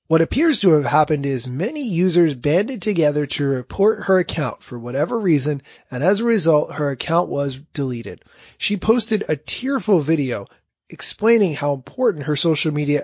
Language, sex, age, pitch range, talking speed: English, male, 30-49, 140-195 Hz, 165 wpm